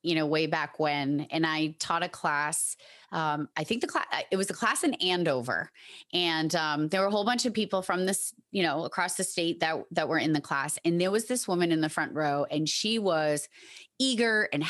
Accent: American